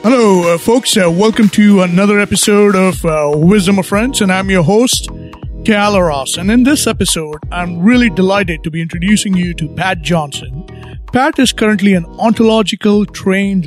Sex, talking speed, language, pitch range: male, 170 wpm, English, 155-200 Hz